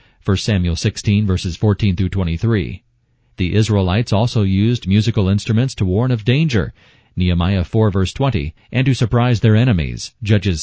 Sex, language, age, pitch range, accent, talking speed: male, English, 40-59, 95-120 Hz, American, 140 wpm